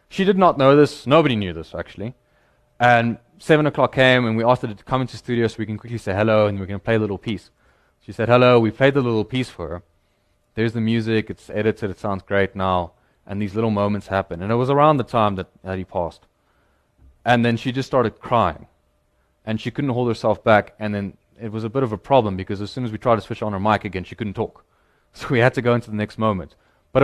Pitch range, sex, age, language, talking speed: 100-130 Hz, male, 20-39, English, 255 wpm